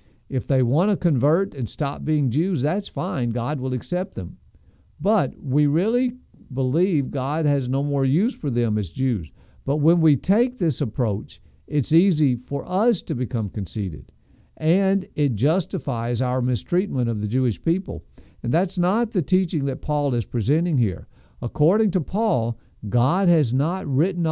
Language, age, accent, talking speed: English, 50-69, American, 165 wpm